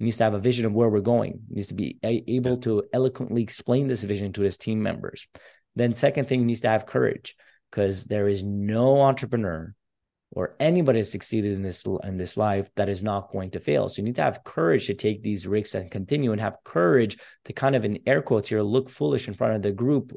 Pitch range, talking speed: 105-130 Hz, 240 wpm